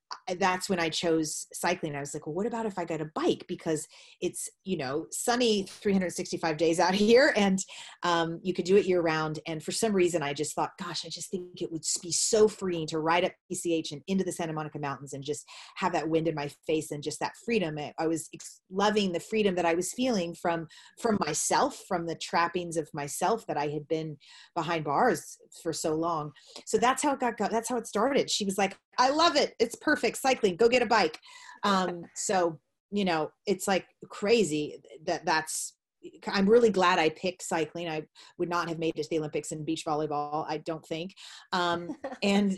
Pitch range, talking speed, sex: 160-200 Hz, 215 wpm, female